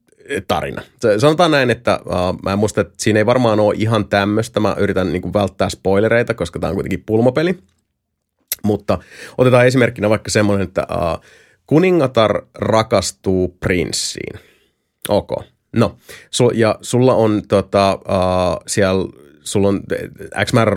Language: Finnish